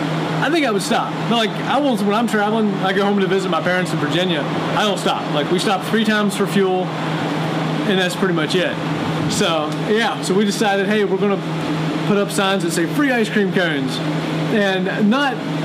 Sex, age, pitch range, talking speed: male, 30-49, 160-205 Hz, 210 wpm